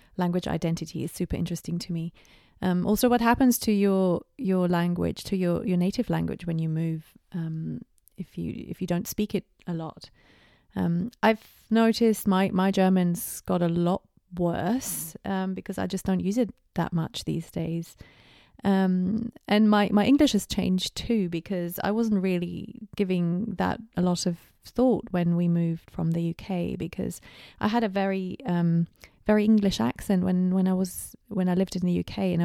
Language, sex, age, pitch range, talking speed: English, female, 30-49, 175-210 Hz, 180 wpm